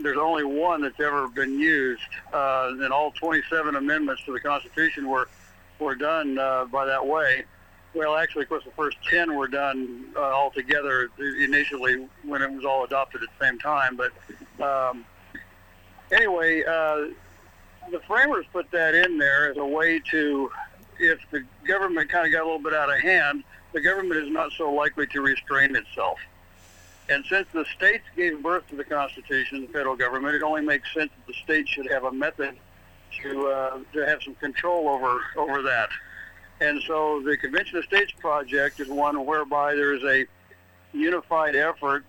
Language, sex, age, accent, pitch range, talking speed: English, male, 60-79, American, 130-155 Hz, 175 wpm